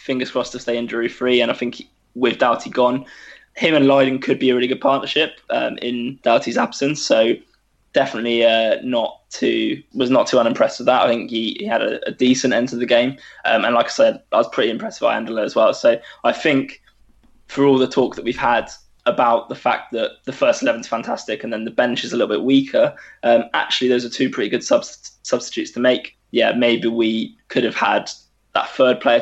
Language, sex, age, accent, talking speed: English, male, 20-39, British, 225 wpm